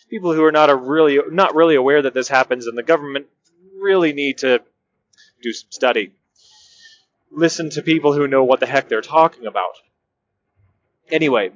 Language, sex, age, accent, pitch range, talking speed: English, male, 30-49, American, 135-175 Hz, 160 wpm